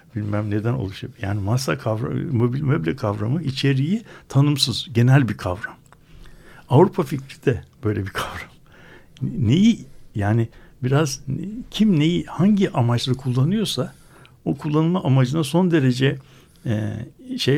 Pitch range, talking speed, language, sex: 120-155 Hz, 120 wpm, Turkish, male